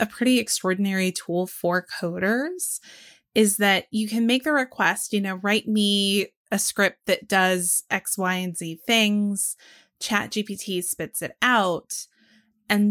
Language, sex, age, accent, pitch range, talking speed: English, female, 20-39, American, 180-210 Hz, 150 wpm